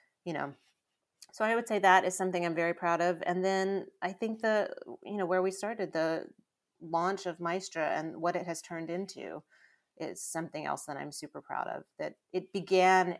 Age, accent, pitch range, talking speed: 30-49, American, 150-180 Hz, 200 wpm